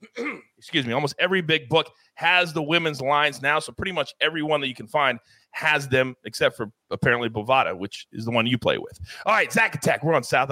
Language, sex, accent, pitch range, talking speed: English, male, American, 130-210 Hz, 230 wpm